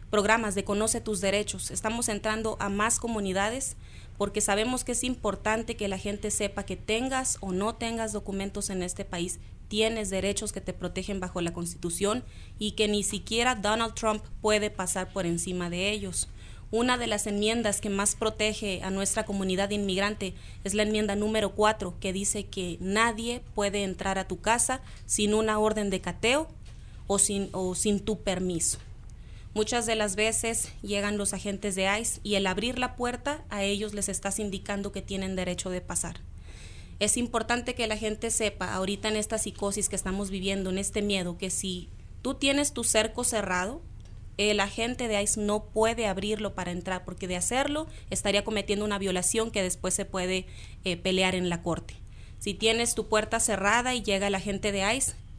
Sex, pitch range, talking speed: female, 190-220 Hz, 180 wpm